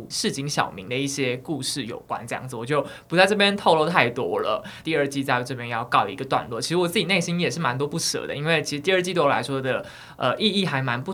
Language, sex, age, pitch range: Chinese, male, 20-39, 130-155 Hz